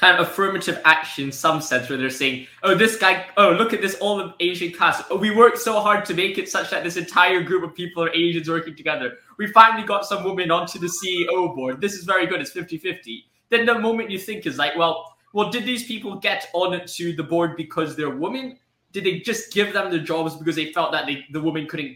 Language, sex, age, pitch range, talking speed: English, male, 10-29, 155-205 Hz, 240 wpm